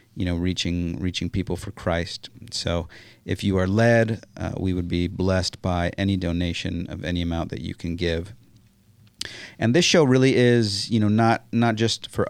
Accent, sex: American, male